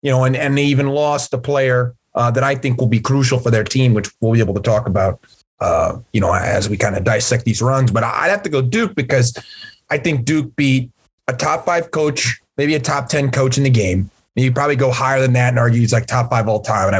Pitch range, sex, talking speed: 115-145 Hz, male, 265 wpm